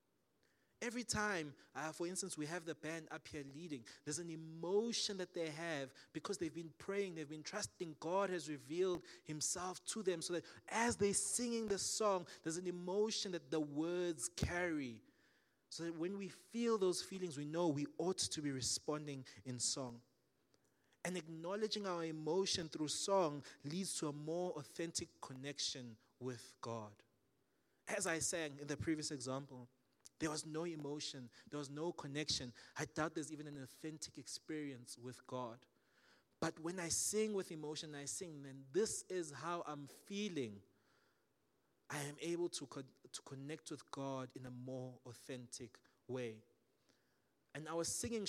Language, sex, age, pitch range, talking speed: English, male, 20-39, 135-175 Hz, 160 wpm